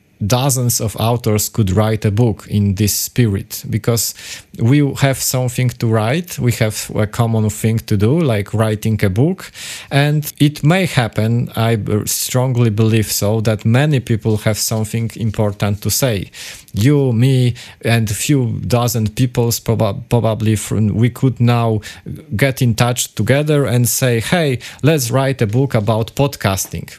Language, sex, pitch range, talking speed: Polish, male, 105-125 Hz, 150 wpm